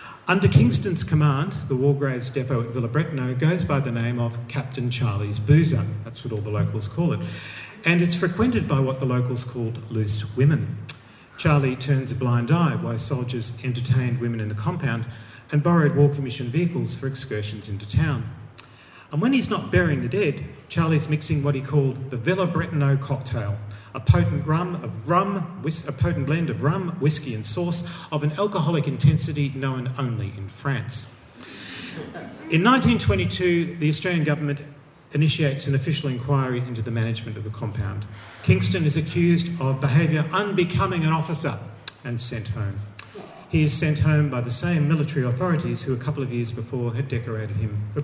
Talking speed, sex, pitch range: 170 wpm, male, 120-155 Hz